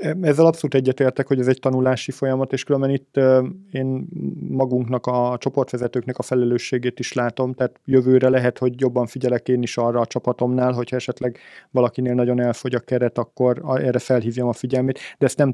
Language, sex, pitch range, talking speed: Hungarian, male, 125-135 Hz, 180 wpm